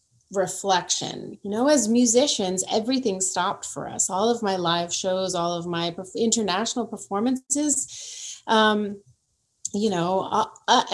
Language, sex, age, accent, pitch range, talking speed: English, female, 30-49, American, 180-240 Hz, 125 wpm